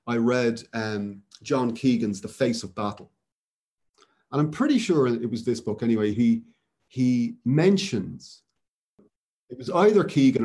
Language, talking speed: English, 145 wpm